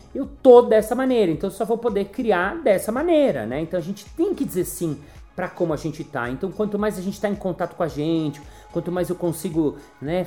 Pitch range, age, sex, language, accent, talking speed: 150-205 Hz, 30-49, male, Portuguese, Brazilian, 240 wpm